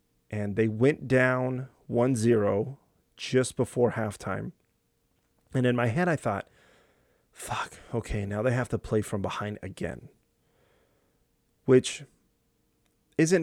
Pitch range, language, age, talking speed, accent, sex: 100-130 Hz, English, 30-49, 120 wpm, American, male